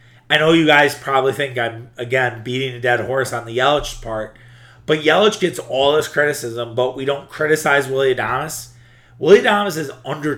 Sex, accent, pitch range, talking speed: male, American, 120-145 Hz, 185 wpm